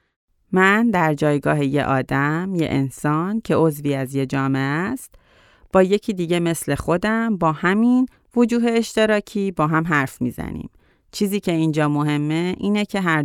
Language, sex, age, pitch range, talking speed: Persian, female, 30-49, 145-180 Hz, 150 wpm